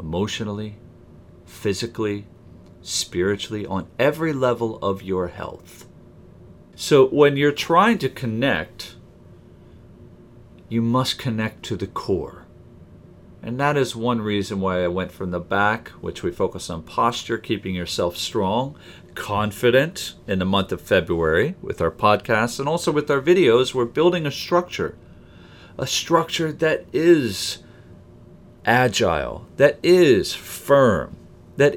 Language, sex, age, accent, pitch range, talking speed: English, male, 40-59, American, 95-135 Hz, 125 wpm